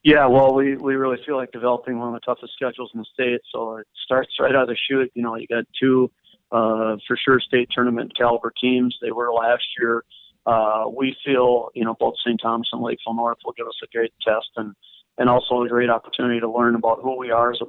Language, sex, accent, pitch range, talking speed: English, male, American, 115-130 Hz, 240 wpm